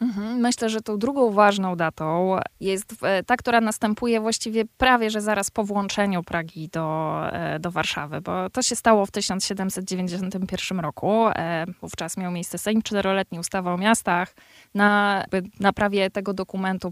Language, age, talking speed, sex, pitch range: Polish, 20-39, 140 wpm, female, 180-220 Hz